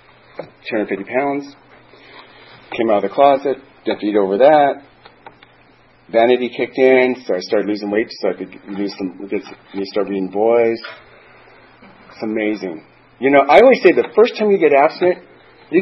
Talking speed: 160 wpm